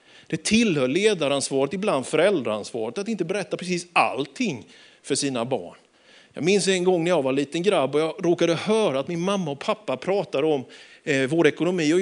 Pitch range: 140-185 Hz